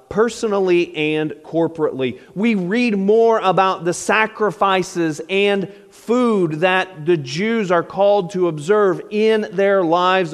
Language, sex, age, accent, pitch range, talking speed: English, male, 40-59, American, 155-205 Hz, 120 wpm